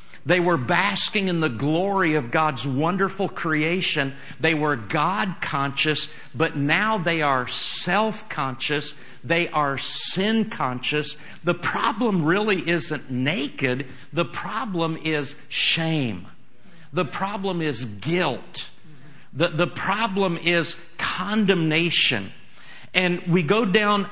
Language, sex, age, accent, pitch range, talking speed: English, male, 50-69, American, 130-170 Hz, 105 wpm